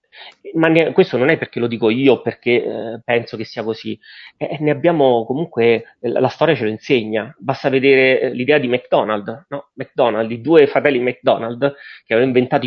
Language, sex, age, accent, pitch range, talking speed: Italian, male, 30-49, native, 120-150 Hz, 170 wpm